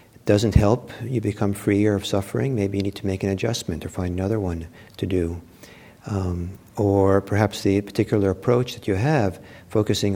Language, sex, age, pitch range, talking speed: English, male, 50-69, 95-115 Hz, 175 wpm